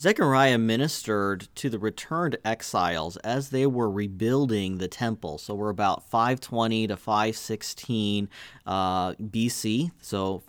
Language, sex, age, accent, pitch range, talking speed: English, male, 30-49, American, 105-140 Hz, 120 wpm